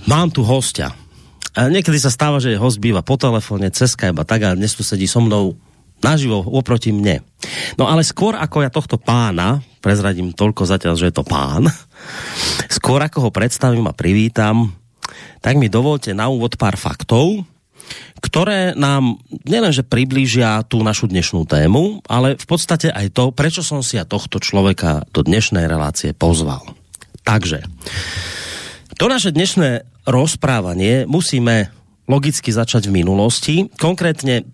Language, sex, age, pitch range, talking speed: Slovak, male, 30-49, 105-135 Hz, 150 wpm